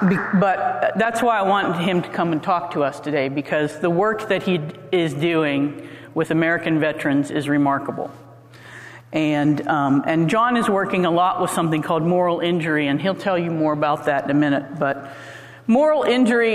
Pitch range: 150-200 Hz